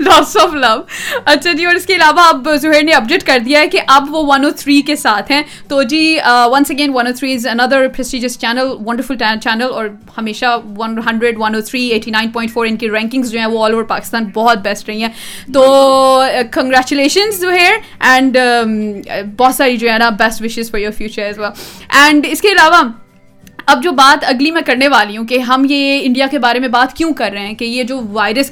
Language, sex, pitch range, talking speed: Urdu, female, 235-300 Hz, 180 wpm